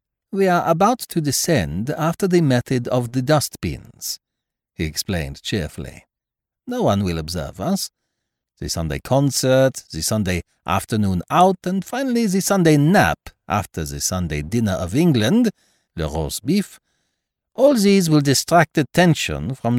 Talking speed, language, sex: 140 wpm, English, male